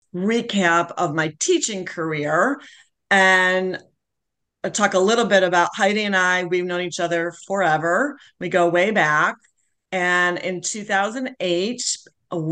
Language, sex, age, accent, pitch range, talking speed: English, female, 40-59, American, 165-195 Hz, 130 wpm